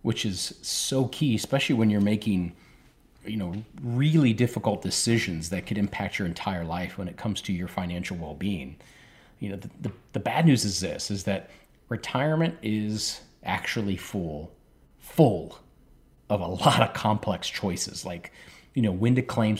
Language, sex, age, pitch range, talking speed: English, male, 30-49, 95-120 Hz, 160 wpm